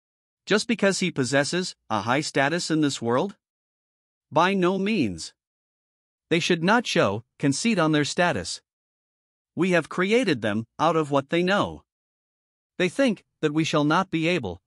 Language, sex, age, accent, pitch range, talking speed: English, male, 50-69, American, 130-180 Hz, 155 wpm